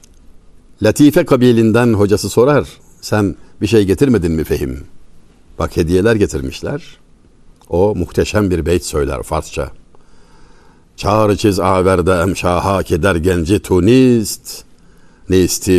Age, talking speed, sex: 60-79, 105 wpm, male